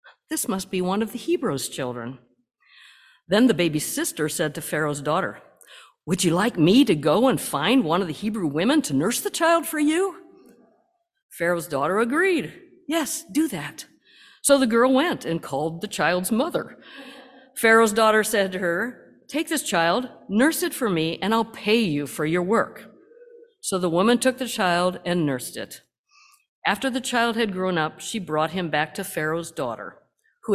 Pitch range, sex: 165-260 Hz, female